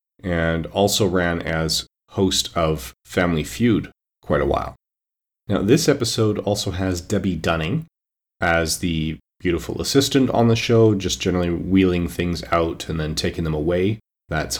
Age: 30-49